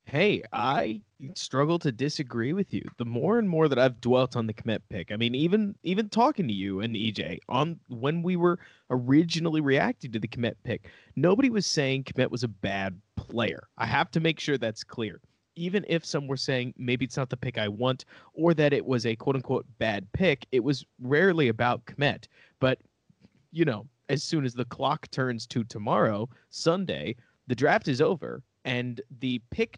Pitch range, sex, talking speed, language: 115-155 Hz, male, 195 wpm, English